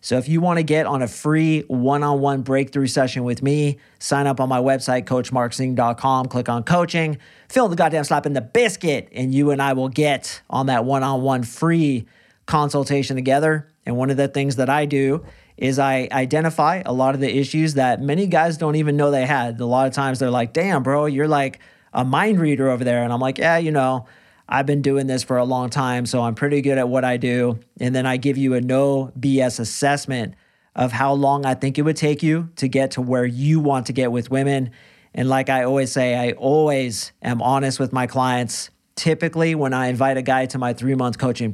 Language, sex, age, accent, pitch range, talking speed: English, male, 40-59, American, 125-145 Hz, 220 wpm